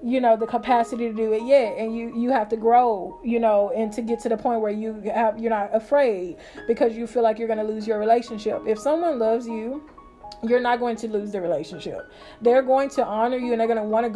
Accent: American